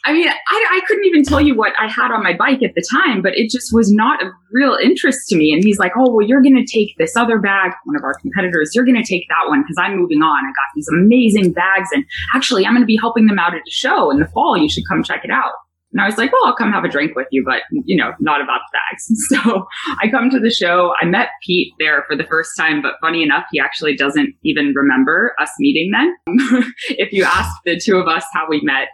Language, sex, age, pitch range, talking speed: English, female, 20-39, 160-260 Hz, 275 wpm